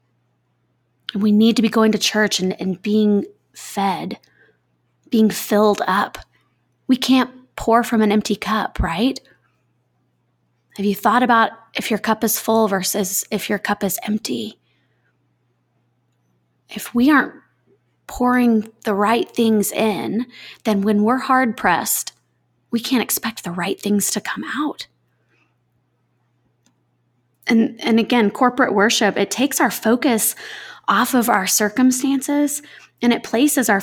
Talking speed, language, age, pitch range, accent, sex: 135 wpm, English, 20-39, 190-235 Hz, American, female